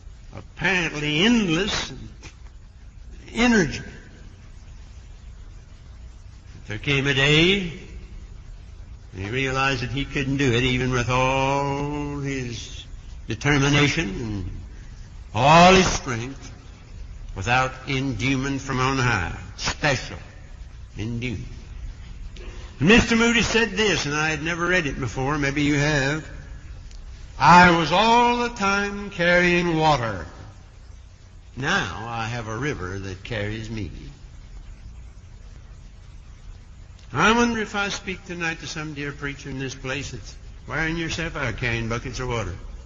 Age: 60-79